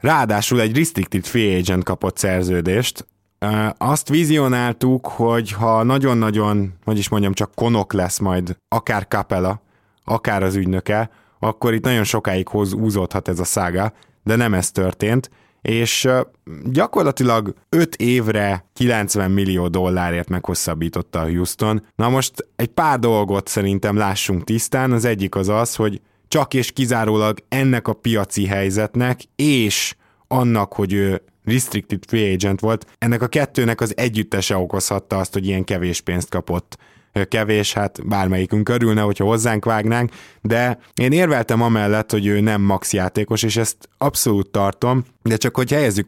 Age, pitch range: 20-39, 95-120 Hz